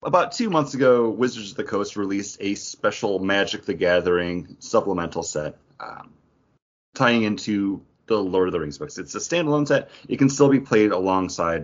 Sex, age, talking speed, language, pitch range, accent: male, 30-49, 180 wpm, English, 85-115 Hz, American